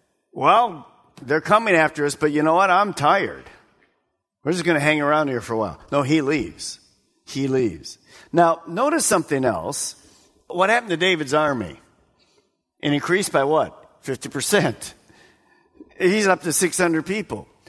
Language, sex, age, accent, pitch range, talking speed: English, male, 50-69, American, 150-215 Hz, 155 wpm